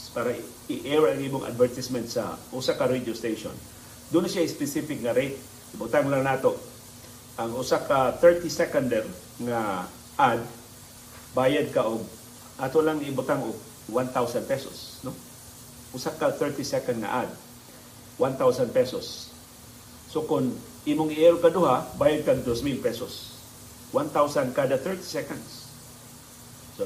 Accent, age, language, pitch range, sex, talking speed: native, 50-69, Filipino, 120-140 Hz, male, 115 wpm